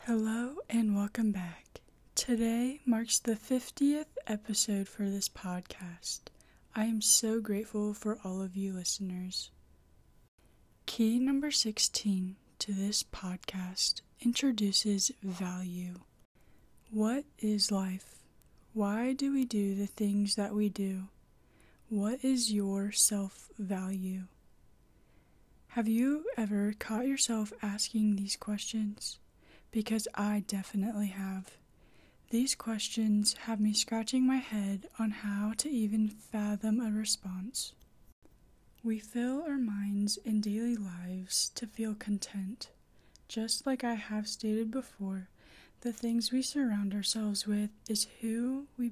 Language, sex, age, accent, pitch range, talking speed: English, female, 20-39, American, 200-235 Hz, 120 wpm